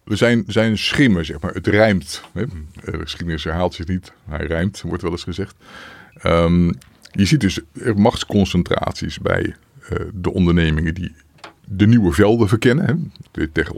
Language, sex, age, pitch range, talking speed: Dutch, male, 50-69, 80-100 Hz, 155 wpm